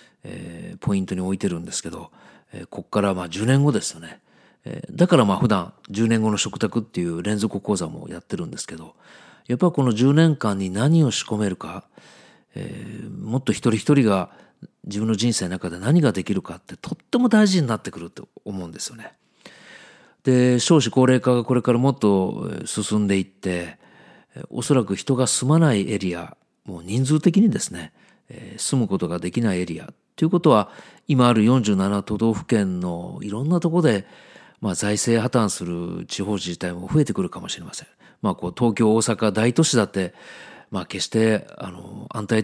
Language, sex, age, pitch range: Japanese, male, 40-59, 100-140 Hz